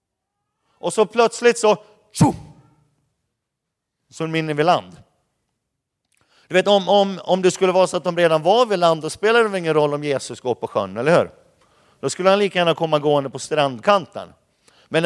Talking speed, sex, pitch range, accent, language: 190 wpm, male, 155-195 Hz, native, Swedish